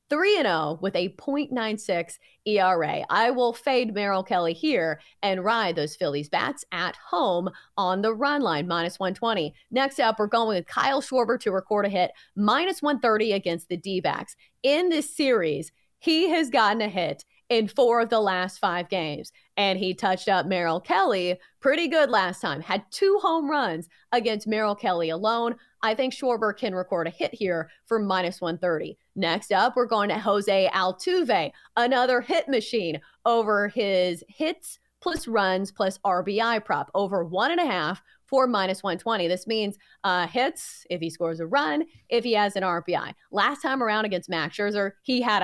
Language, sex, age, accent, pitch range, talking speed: English, female, 30-49, American, 185-245 Hz, 175 wpm